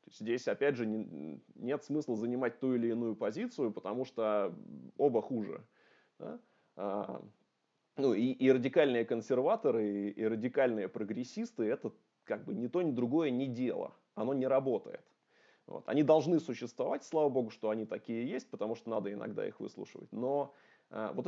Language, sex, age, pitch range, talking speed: Russian, male, 20-39, 110-140 Hz, 145 wpm